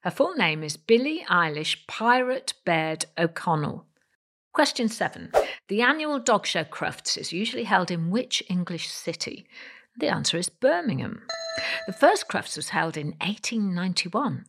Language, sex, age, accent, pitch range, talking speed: English, female, 50-69, British, 165-255 Hz, 140 wpm